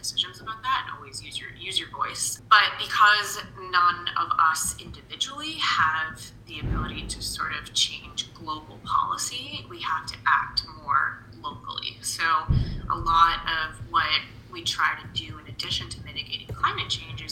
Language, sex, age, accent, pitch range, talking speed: English, female, 20-39, American, 115-160 Hz, 160 wpm